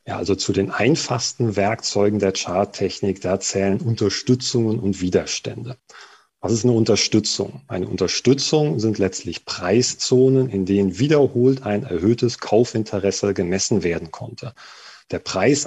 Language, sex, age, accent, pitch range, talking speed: German, male, 40-59, German, 100-135 Hz, 125 wpm